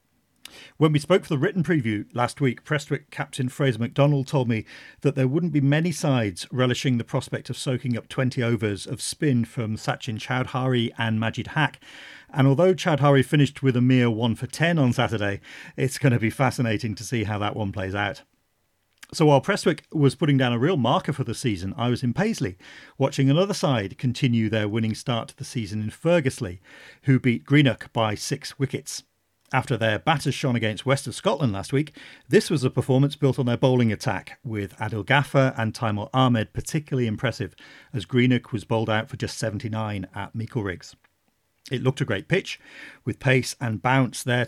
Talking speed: 195 wpm